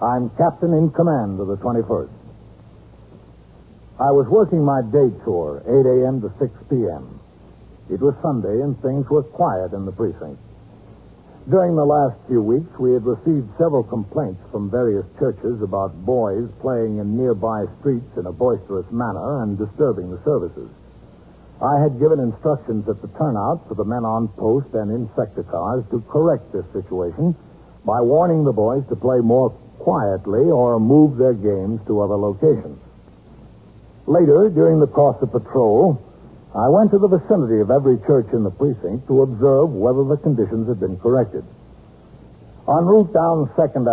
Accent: American